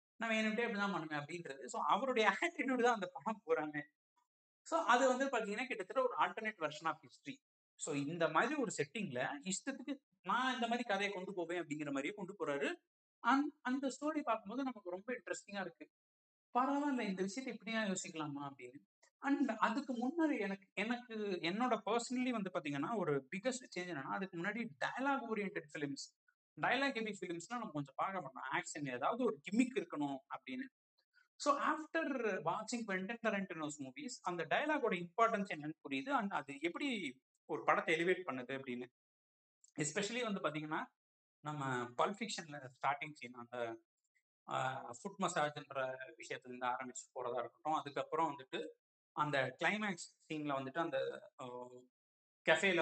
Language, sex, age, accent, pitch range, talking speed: Tamil, male, 60-79, native, 150-240 Hz, 140 wpm